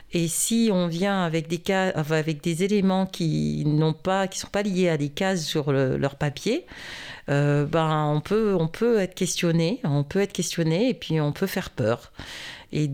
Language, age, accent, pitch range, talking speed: French, 40-59, French, 150-180 Hz, 190 wpm